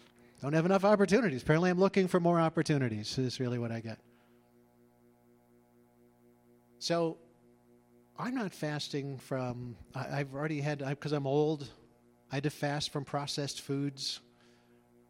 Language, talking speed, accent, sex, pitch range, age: English, 135 wpm, American, male, 105-160 Hz, 40-59